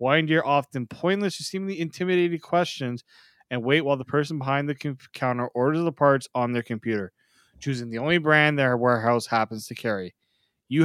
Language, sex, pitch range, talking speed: English, male, 125-160 Hz, 175 wpm